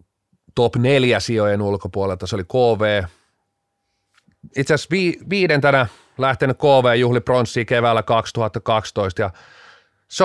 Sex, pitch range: male, 105-125 Hz